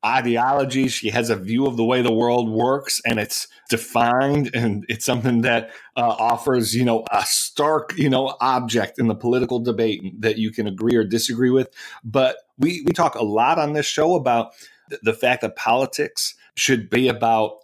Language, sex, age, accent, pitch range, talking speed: English, male, 30-49, American, 115-135 Hz, 185 wpm